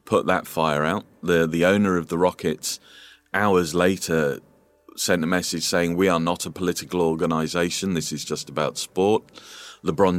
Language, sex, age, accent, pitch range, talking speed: English, male, 30-49, British, 80-90 Hz, 165 wpm